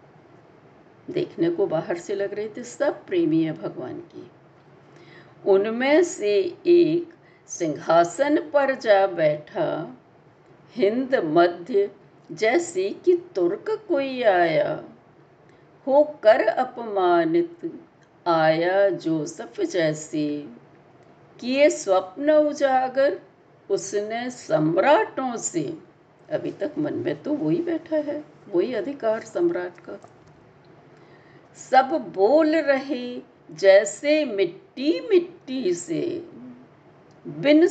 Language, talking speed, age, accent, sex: Hindi, 90 wpm, 60-79, native, female